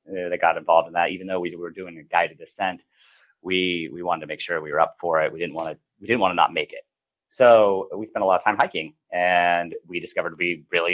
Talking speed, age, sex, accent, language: 265 wpm, 30-49, male, American, English